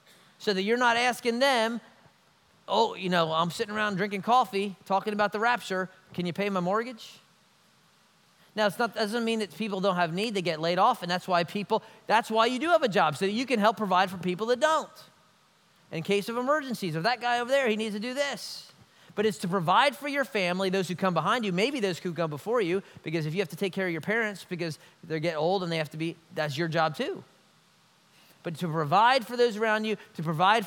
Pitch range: 175-220 Hz